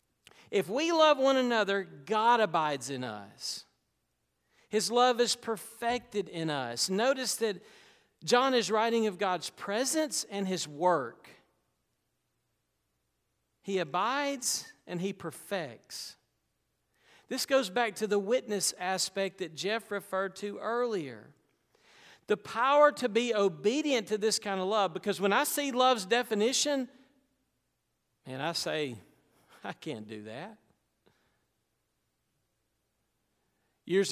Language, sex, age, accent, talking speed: English, male, 40-59, American, 120 wpm